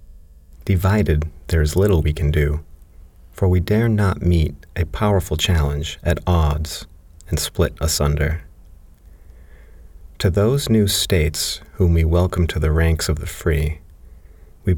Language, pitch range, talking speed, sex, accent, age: English, 75-90 Hz, 140 wpm, male, American, 40-59